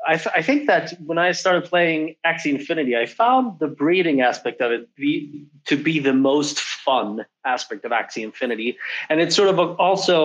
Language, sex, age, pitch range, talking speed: English, male, 30-49, 135-185 Hz, 195 wpm